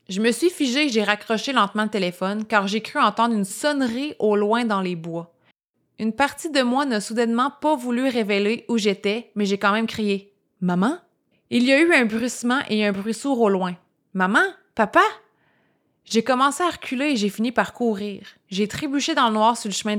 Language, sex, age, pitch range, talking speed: French, female, 30-49, 200-245 Hz, 220 wpm